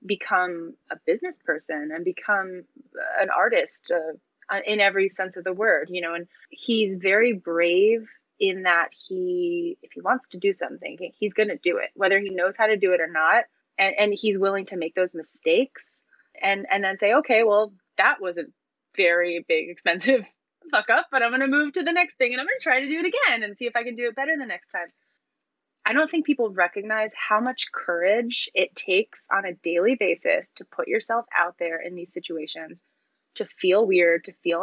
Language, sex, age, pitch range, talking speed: English, female, 20-39, 185-290 Hz, 210 wpm